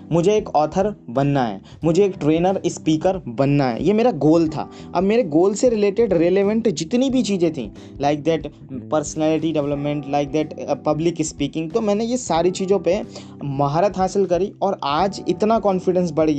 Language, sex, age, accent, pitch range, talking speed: Hindi, male, 20-39, native, 150-195 Hz, 170 wpm